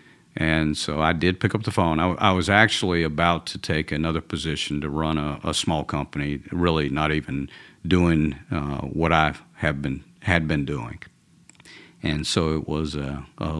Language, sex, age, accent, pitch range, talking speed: English, male, 50-69, American, 80-95 Hz, 180 wpm